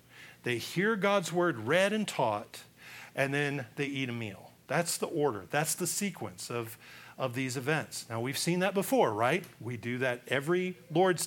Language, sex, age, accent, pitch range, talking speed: English, male, 40-59, American, 135-210 Hz, 180 wpm